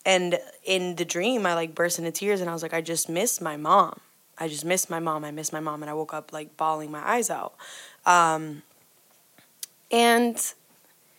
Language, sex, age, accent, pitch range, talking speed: English, female, 20-39, American, 165-215 Hz, 205 wpm